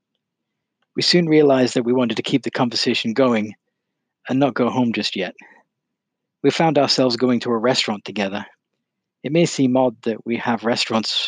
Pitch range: 110-130 Hz